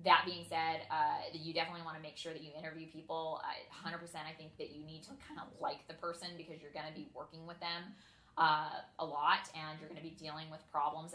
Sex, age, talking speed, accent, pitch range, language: female, 20-39, 250 wpm, American, 155-170 Hz, English